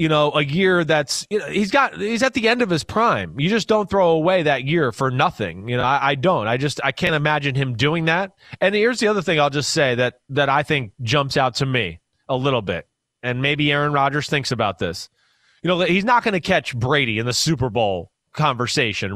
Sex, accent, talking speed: male, American, 240 wpm